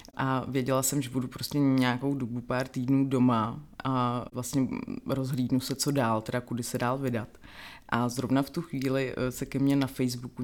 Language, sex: Czech, female